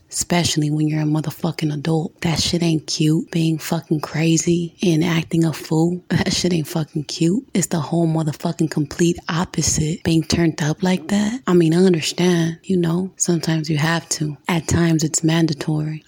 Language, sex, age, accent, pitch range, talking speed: English, female, 20-39, American, 160-175 Hz, 175 wpm